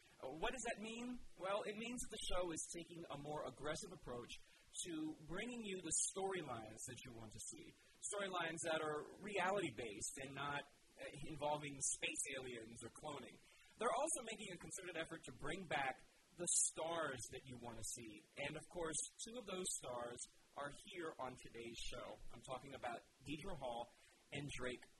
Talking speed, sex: 170 wpm, male